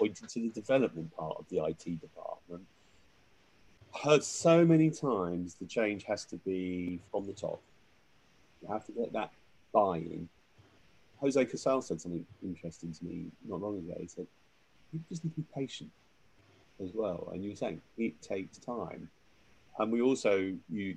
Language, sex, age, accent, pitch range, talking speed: English, male, 30-49, British, 90-120 Hz, 165 wpm